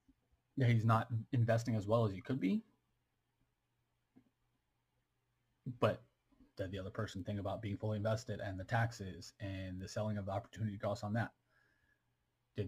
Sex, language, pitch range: male, English, 100-115 Hz